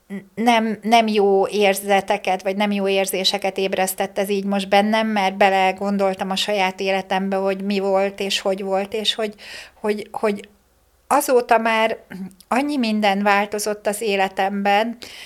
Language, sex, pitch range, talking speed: Hungarian, female, 200-220 Hz, 140 wpm